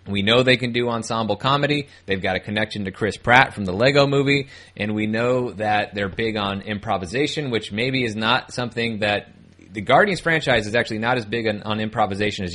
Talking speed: 210 wpm